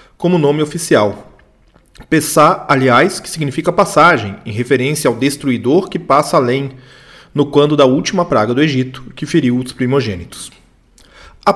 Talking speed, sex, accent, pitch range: 140 wpm, male, Brazilian, 130-175 Hz